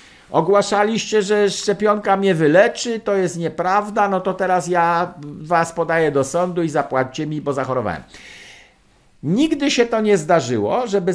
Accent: native